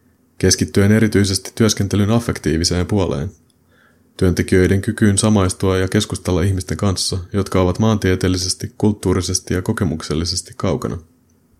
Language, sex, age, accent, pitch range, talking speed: Finnish, male, 30-49, native, 90-100 Hz, 100 wpm